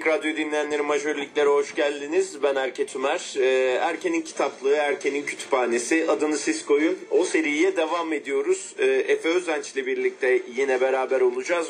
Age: 40-59